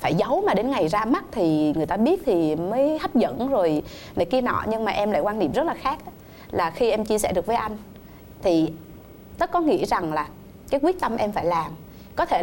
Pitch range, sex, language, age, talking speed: 180-255 Hz, female, Vietnamese, 20-39, 240 wpm